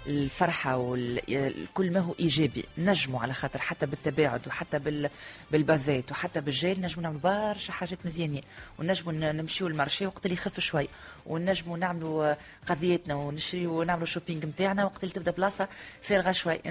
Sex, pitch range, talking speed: female, 165-200 Hz, 140 wpm